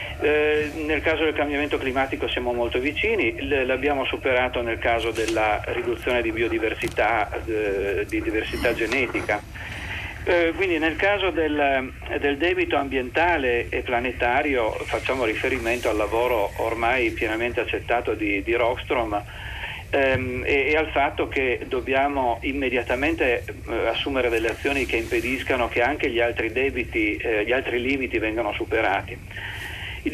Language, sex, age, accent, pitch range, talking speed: Italian, male, 40-59, native, 115-160 Hz, 135 wpm